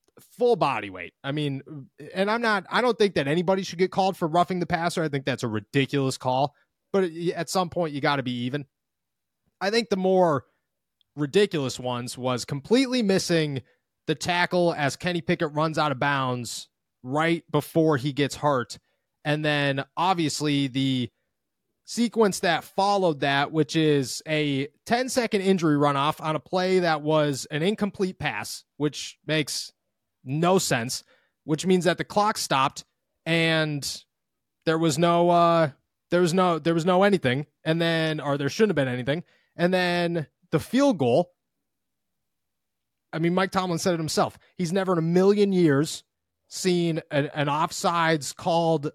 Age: 30-49